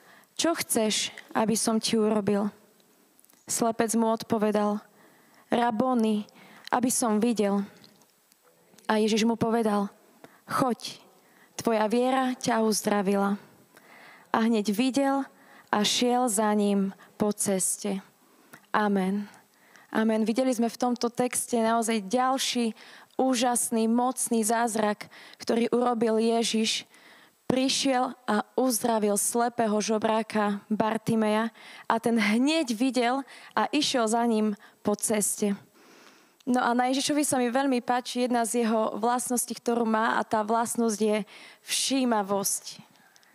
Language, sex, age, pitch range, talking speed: Slovak, female, 20-39, 215-250 Hz, 110 wpm